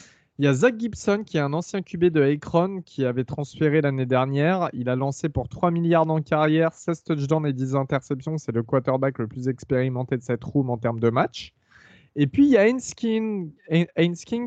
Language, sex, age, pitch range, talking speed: French, male, 20-39, 130-165 Hz, 205 wpm